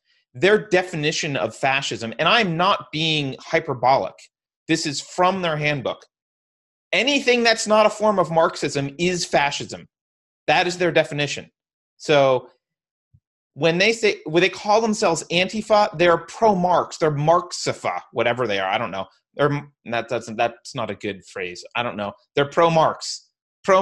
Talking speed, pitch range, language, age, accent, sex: 155 wpm, 130-180 Hz, English, 30-49, American, male